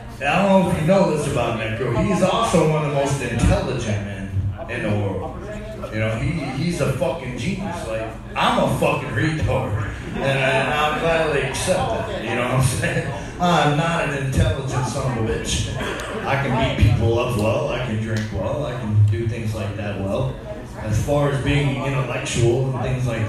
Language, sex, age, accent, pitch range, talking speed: English, male, 30-49, American, 110-140 Hz, 195 wpm